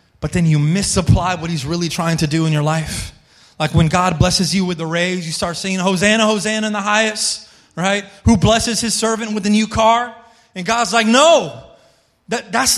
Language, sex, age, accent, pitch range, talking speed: English, male, 30-49, American, 180-235 Hz, 200 wpm